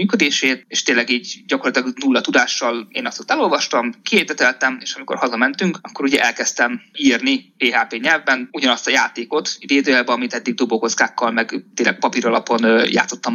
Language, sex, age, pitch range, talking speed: Hungarian, male, 20-39, 120-195 Hz, 145 wpm